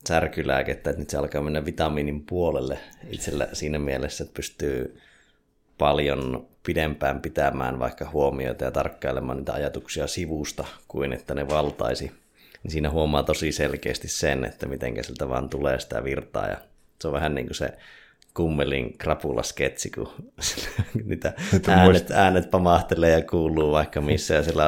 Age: 30-49